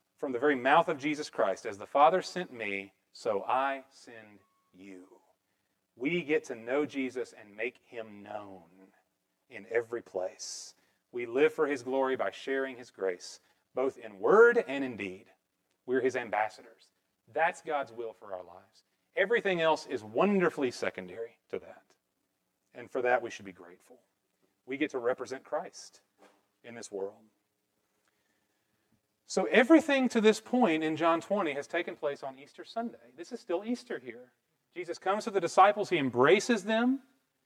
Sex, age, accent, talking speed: male, 40-59, American, 160 wpm